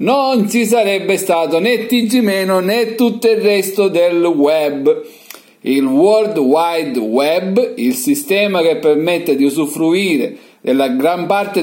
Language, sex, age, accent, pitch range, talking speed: Italian, male, 50-69, native, 160-235 Hz, 130 wpm